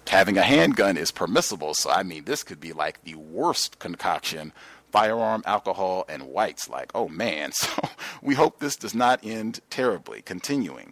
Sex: male